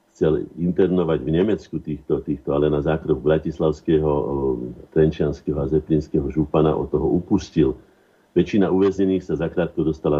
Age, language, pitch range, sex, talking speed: 50-69, Slovak, 75-90 Hz, male, 130 wpm